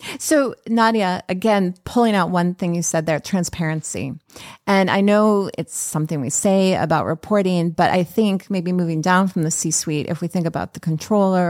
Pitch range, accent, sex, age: 160-195 Hz, American, female, 30-49